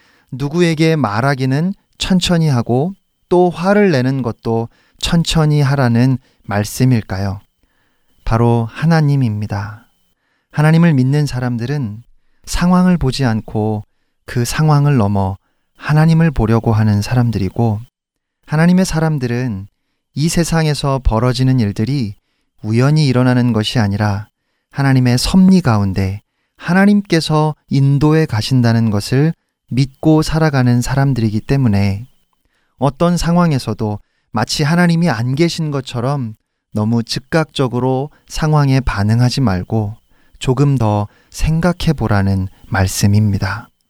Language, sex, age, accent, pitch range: Korean, male, 40-59, native, 110-150 Hz